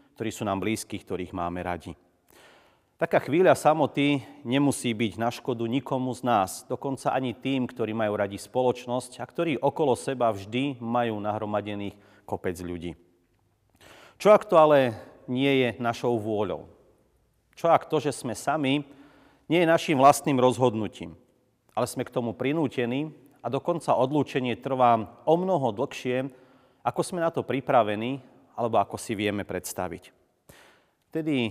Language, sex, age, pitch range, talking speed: Slovak, male, 40-59, 110-140 Hz, 145 wpm